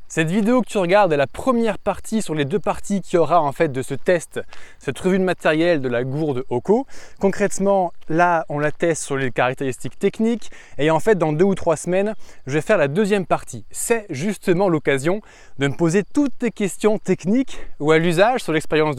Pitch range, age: 150-200 Hz, 20-39